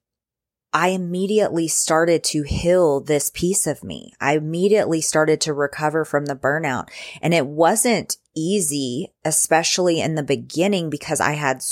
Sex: female